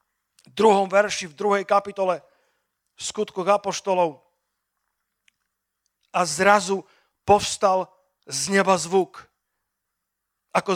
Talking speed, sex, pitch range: 85 wpm, male, 180-220 Hz